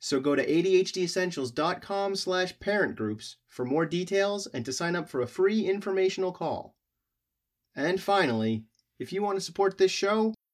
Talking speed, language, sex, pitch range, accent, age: 155 wpm, English, male, 125-185 Hz, American, 30-49